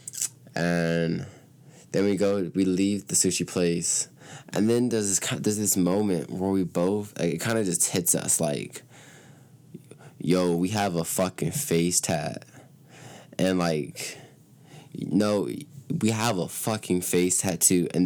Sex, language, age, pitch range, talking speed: male, English, 20-39, 85-100 Hz, 150 wpm